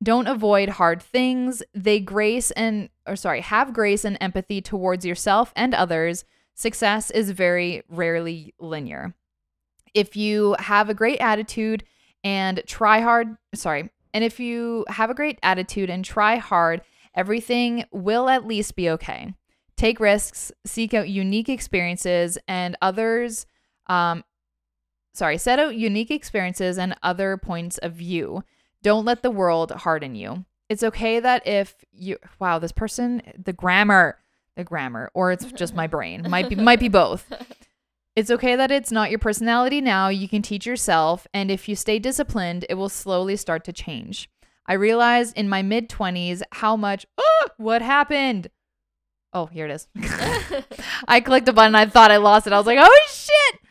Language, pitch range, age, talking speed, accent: English, 180-230 Hz, 20-39, 165 wpm, American